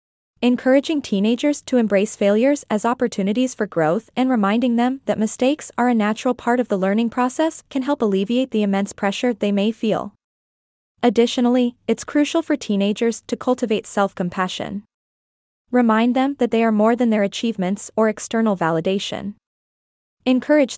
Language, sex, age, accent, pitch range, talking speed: English, female, 20-39, American, 200-250 Hz, 150 wpm